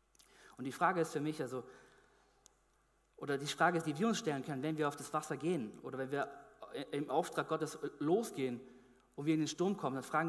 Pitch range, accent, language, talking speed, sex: 130-170 Hz, German, German, 215 wpm, male